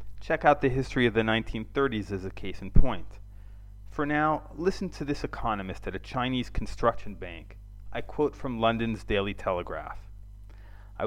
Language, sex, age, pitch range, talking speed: English, male, 30-49, 100-120 Hz, 165 wpm